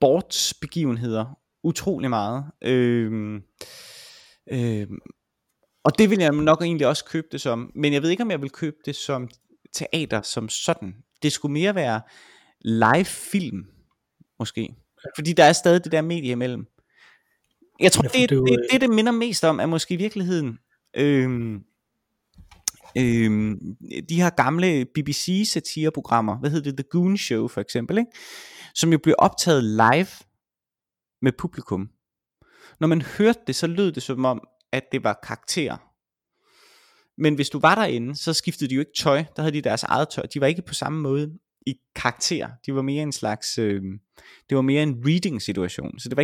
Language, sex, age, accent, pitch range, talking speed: Danish, male, 20-39, native, 120-170 Hz, 170 wpm